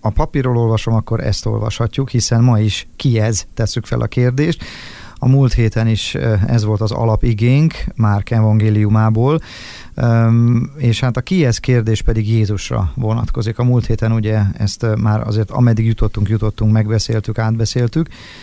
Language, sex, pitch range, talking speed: Hungarian, male, 110-120 Hz, 150 wpm